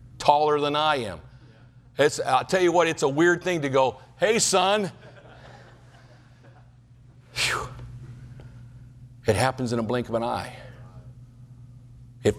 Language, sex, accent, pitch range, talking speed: English, male, American, 120-145 Hz, 125 wpm